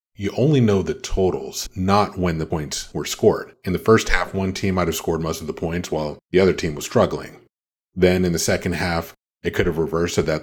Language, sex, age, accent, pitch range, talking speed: English, male, 30-49, American, 80-95 Hz, 235 wpm